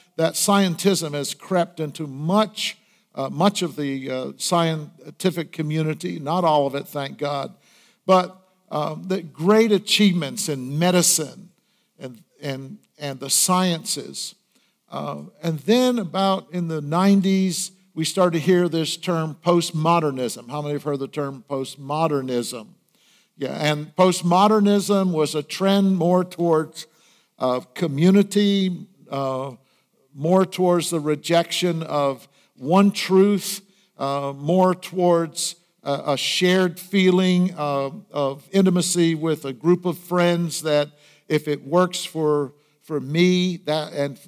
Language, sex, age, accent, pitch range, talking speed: English, male, 50-69, American, 150-185 Hz, 130 wpm